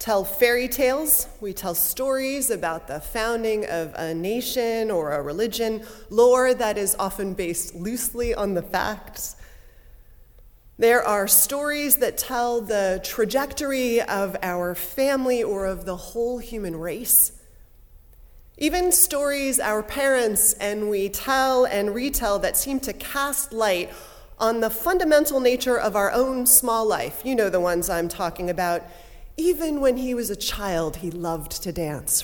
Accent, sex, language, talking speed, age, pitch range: American, female, English, 150 wpm, 30-49, 185-260 Hz